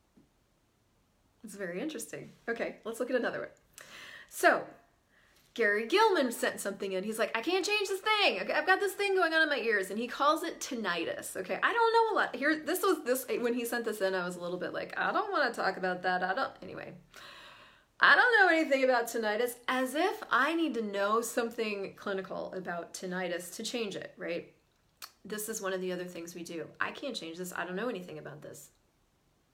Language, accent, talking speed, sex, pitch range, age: English, American, 215 wpm, female, 185-265 Hz, 30-49